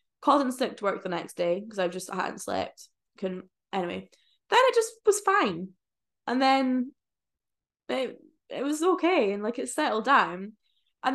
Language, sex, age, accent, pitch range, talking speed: English, female, 10-29, British, 185-245 Hz, 180 wpm